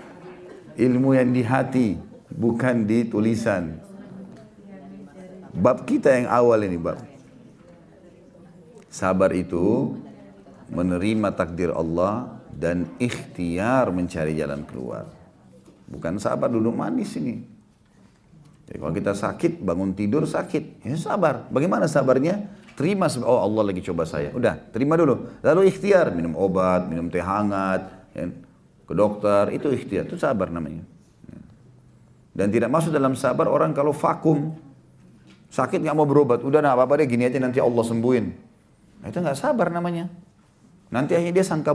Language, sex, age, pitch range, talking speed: Indonesian, male, 40-59, 100-145 Hz, 130 wpm